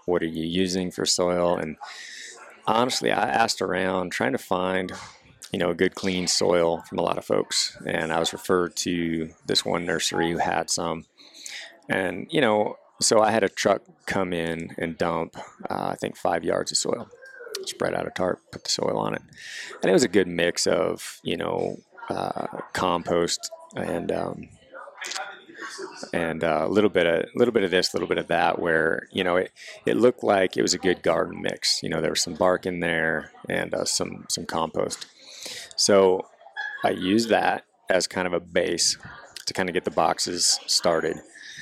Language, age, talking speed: English, 30-49, 195 wpm